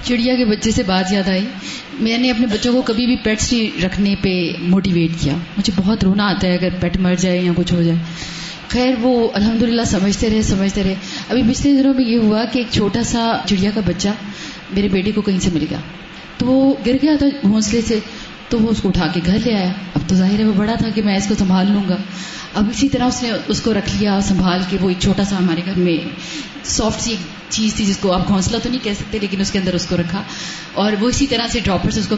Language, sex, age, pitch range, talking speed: Urdu, female, 30-49, 190-245 Hz, 255 wpm